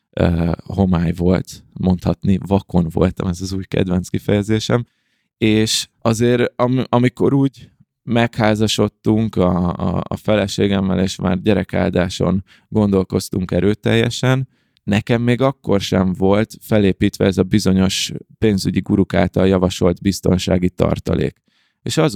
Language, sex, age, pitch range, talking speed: Hungarian, male, 20-39, 95-110 Hz, 115 wpm